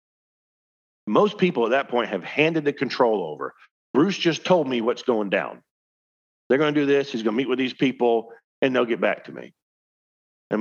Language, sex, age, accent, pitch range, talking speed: English, male, 50-69, American, 100-130 Hz, 205 wpm